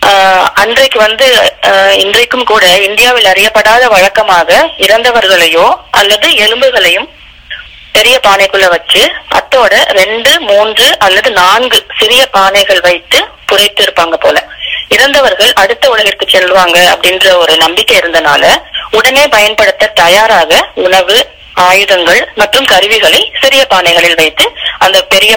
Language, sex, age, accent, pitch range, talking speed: Tamil, female, 20-39, native, 185-245 Hz, 105 wpm